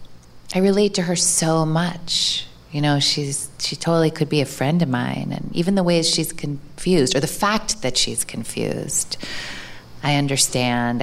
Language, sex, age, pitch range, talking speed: English, female, 30-49, 130-175 Hz, 170 wpm